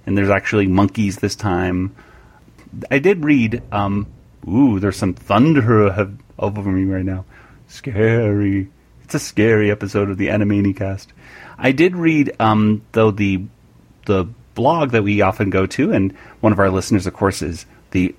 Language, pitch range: English, 95-115 Hz